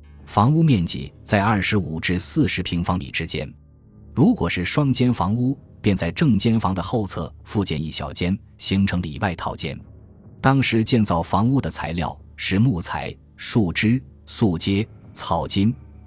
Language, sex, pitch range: Chinese, male, 85-110 Hz